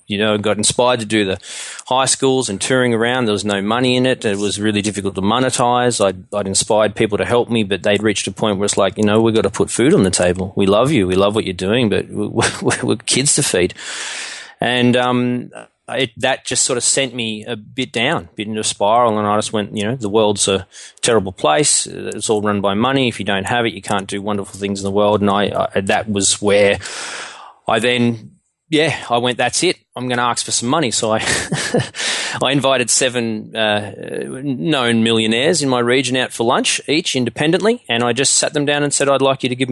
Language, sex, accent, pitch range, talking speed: English, male, Australian, 100-125 Hz, 240 wpm